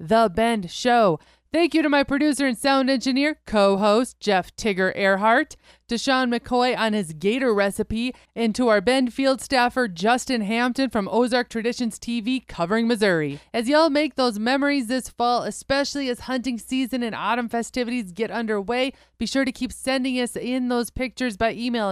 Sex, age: female, 30-49